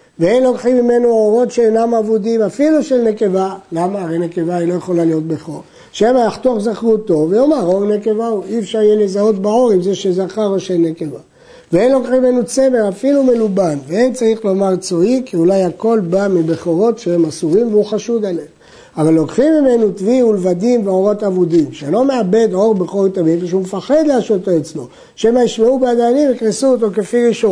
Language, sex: Hebrew, male